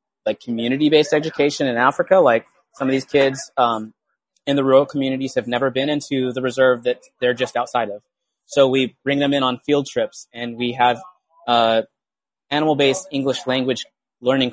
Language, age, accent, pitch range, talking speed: English, 20-39, American, 120-145 Hz, 175 wpm